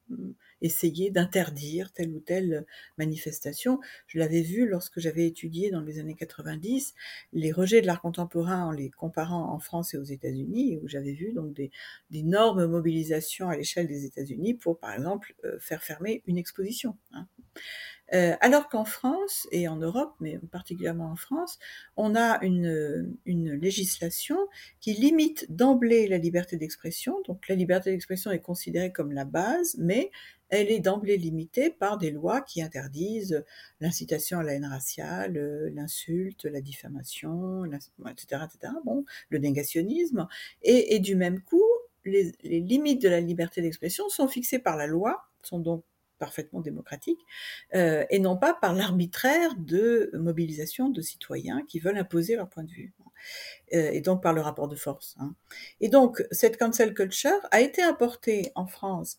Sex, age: female, 60-79